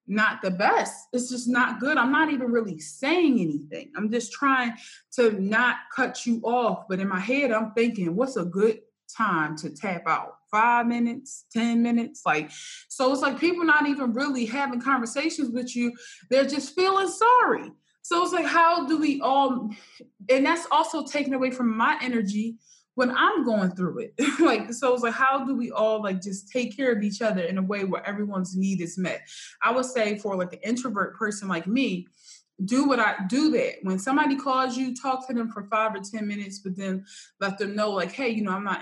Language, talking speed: English, 210 wpm